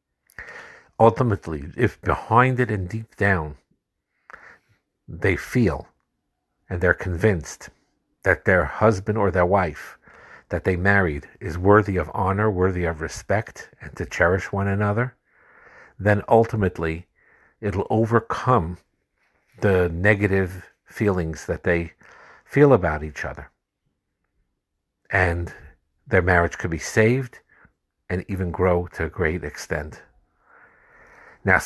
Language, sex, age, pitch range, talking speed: English, male, 50-69, 85-110 Hz, 115 wpm